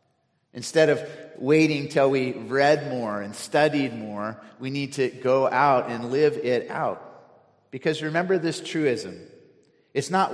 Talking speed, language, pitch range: 145 wpm, English, 115-150 Hz